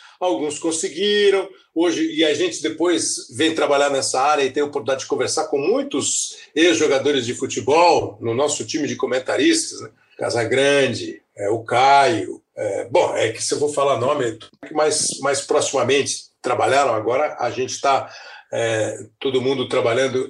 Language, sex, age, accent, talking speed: Portuguese, male, 60-79, Brazilian, 155 wpm